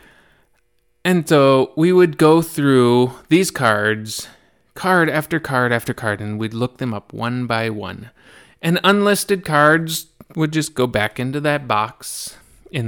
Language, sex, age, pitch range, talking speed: English, male, 20-39, 115-155 Hz, 150 wpm